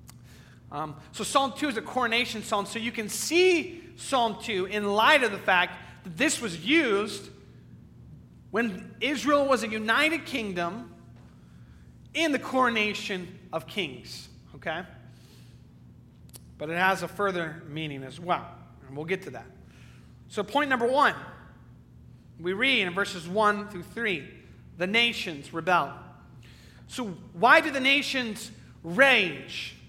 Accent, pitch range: American, 180-255 Hz